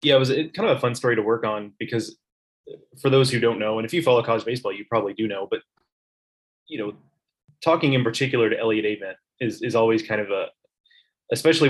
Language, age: English, 20-39